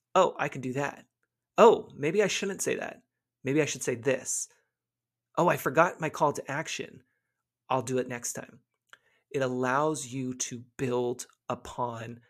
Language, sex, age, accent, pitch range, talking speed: English, male, 30-49, American, 125-165 Hz, 165 wpm